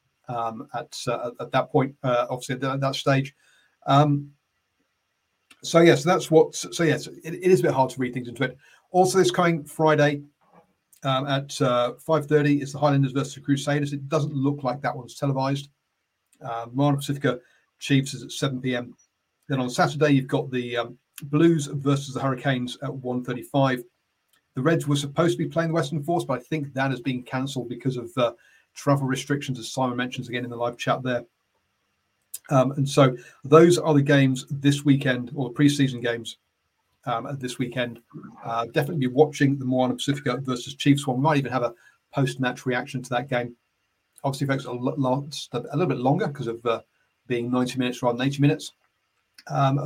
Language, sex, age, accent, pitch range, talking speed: English, male, 40-59, British, 125-145 Hz, 190 wpm